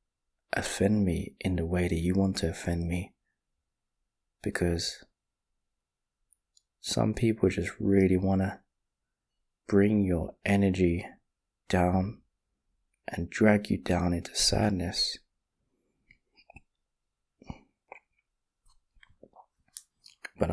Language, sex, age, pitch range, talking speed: English, male, 20-39, 85-100 Hz, 85 wpm